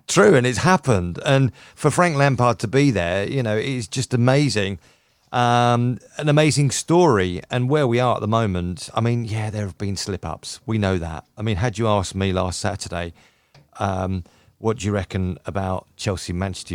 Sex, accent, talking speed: male, British, 185 wpm